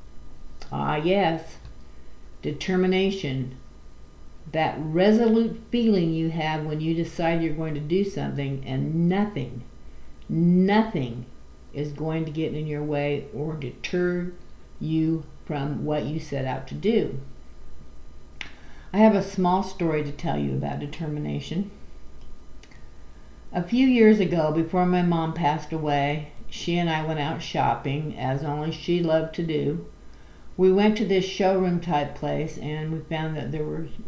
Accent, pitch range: American, 135-175 Hz